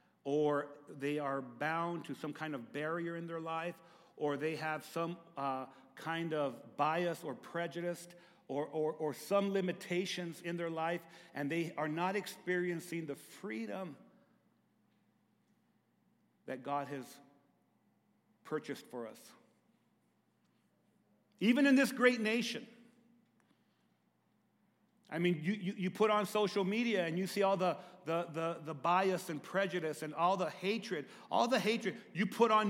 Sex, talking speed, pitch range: male, 140 wpm, 155-205 Hz